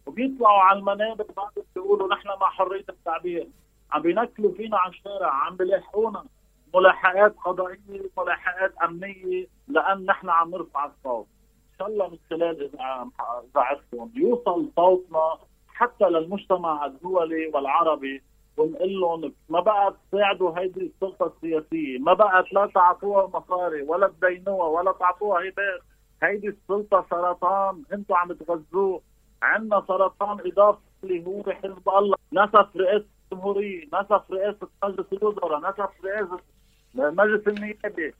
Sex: male